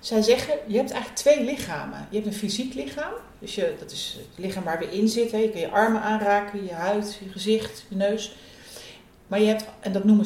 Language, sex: Dutch, female